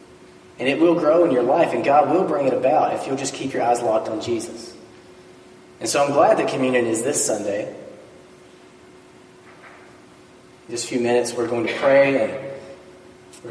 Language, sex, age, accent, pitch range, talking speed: English, male, 30-49, American, 120-150 Hz, 185 wpm